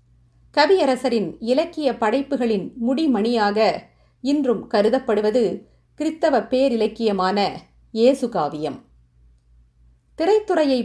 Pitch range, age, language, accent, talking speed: 200-270 Hz, 50-69, Tamil, native, 60 wpm